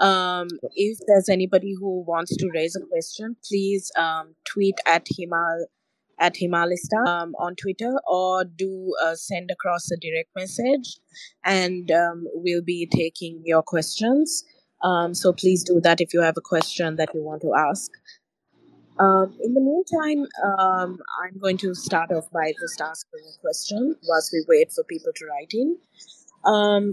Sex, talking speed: female, 165 wpm